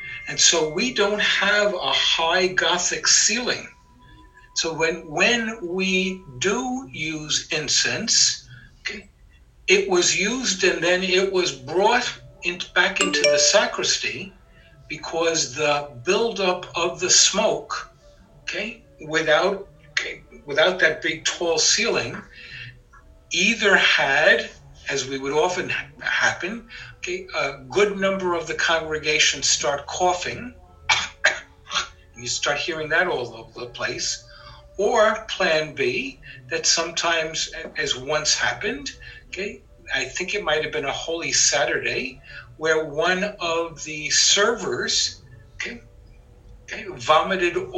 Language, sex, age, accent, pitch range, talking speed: English, male, 60-79, American, 150-190 Hz, 120 wpm